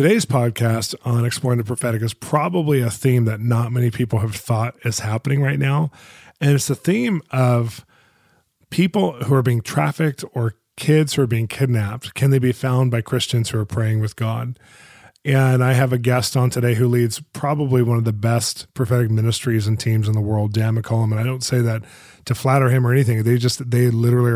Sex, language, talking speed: male, English, 205 wpm